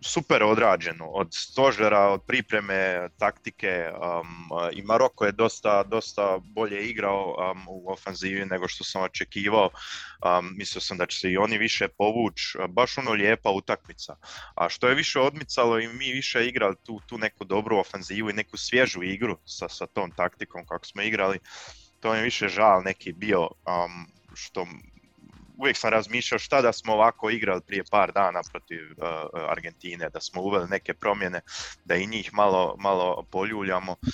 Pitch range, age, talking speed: 90-110 Hz, 20-39, 165 wpm